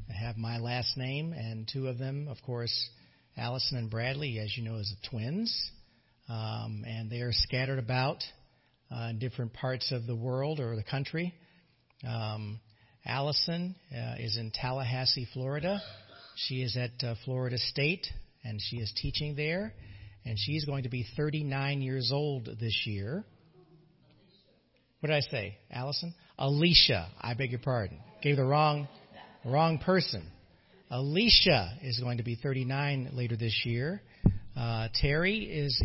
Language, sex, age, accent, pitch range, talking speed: English, male, 50-69, American, 115-145 Hz, 150 wpm